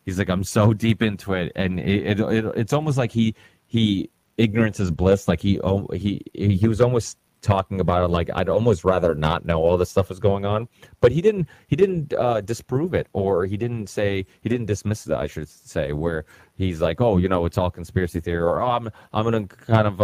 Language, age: English, 30-49